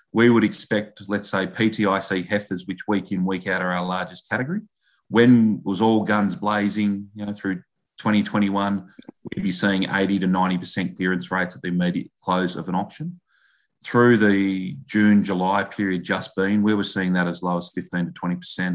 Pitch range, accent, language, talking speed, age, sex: 90-105 Hz, Australian, English, 170 wpm, 30-49, male